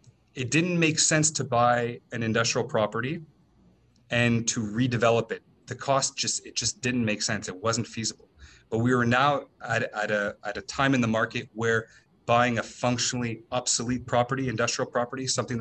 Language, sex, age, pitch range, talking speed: French, male, 30-49, 105-125 Hz, 170 wpm